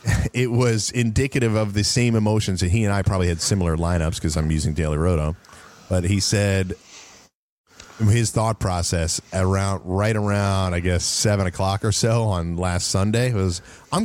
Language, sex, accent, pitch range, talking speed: English, male, American, 95-120 Hz, 170 wpm